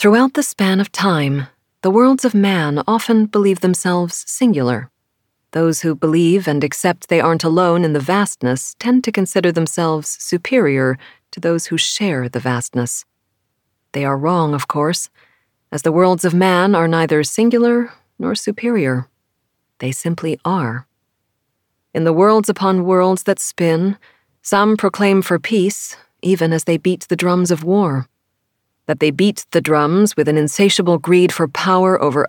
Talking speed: 155 wpm